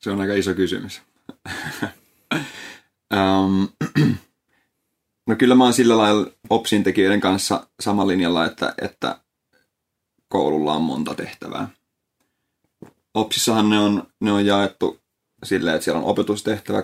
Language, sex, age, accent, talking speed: Finnish, male, 30-49, native, 125 wpm